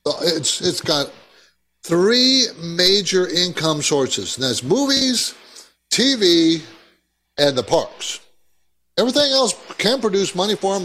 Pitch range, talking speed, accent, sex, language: 130-175 Hz, 115 wpm, American, male, English